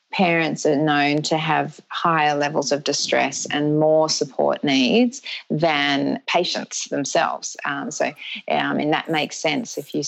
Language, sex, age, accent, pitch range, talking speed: English, female, 30-49, Australian, 145-180 Hz, 155 wpm